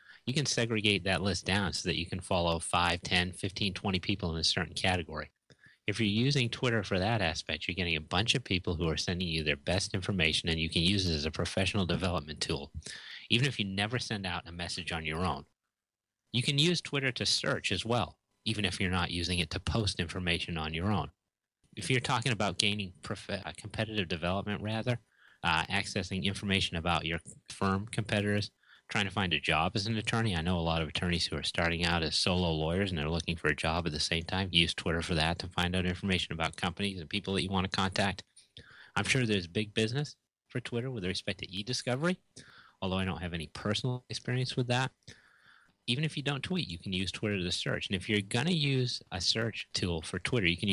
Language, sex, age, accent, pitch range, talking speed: English, male, 30-49, American, 85-110 Hz, 225 wpm